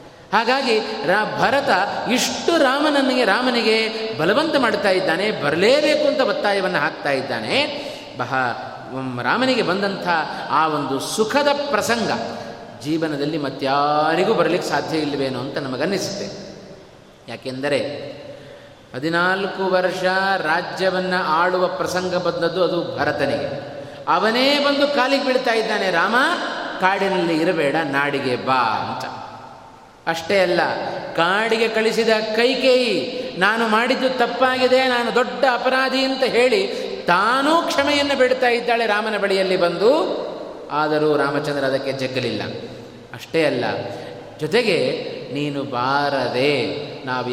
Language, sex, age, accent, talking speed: Kannada, male, 30-49, native, 100 wpm